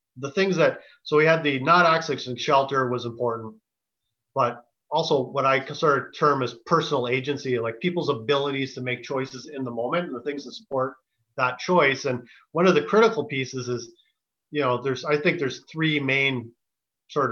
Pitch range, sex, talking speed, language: 125-155 Hz, male, 185 wpm, English